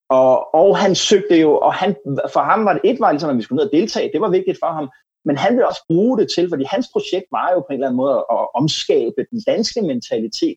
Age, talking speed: 30-49, 260 wpm